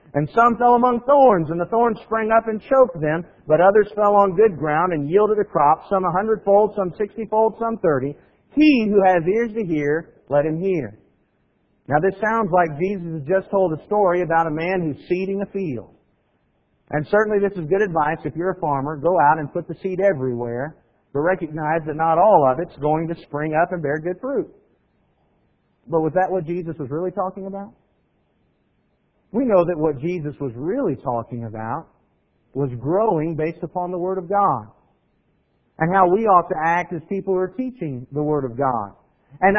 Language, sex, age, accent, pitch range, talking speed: English, male, 50-69, American, 160-205 Hz, 195 wpm